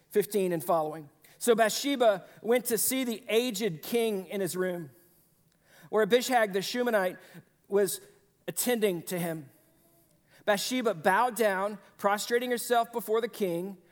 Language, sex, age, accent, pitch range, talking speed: English, male, 40-59, American, 170-230 Hz, 130 wpm